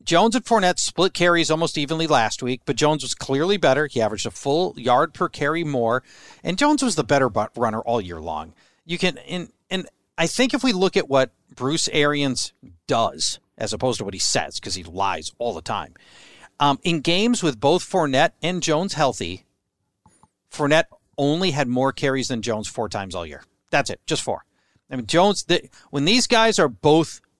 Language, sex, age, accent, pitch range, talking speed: English, male, 40-59, American, 120-175 Hz, 195 wpm